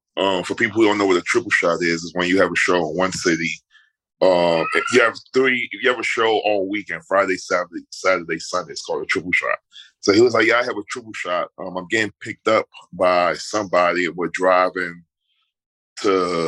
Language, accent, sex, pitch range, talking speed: English, American, male, 85-105 Hz, 215 wpm